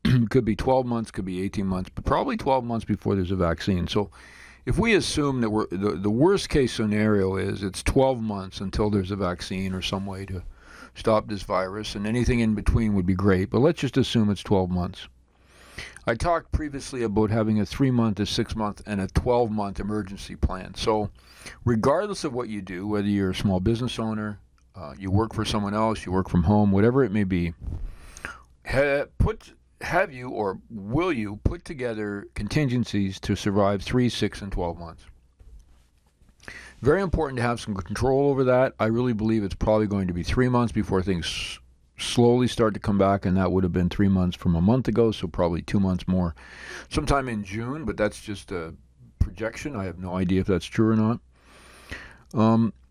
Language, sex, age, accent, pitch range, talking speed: English, male, 50-69, American, 95-115 Hz, 195 wpm